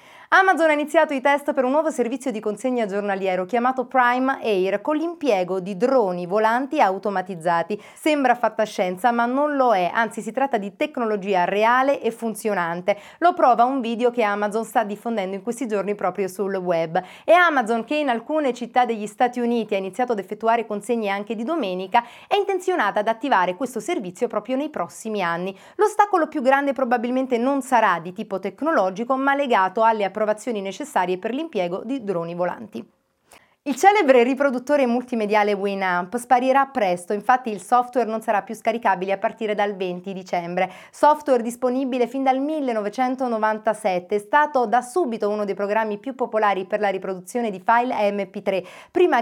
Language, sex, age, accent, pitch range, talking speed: Italian, female, 30-49, native, 200-255 Hz, 165 wpm